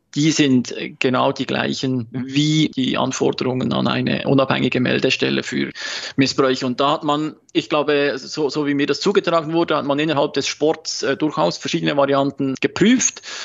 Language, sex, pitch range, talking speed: German, male, 130-150 Hz, 150 wpm